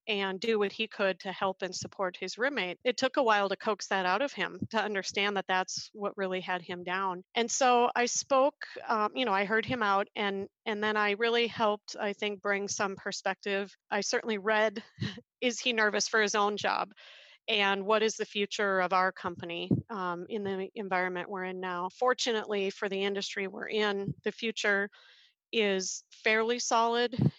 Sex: female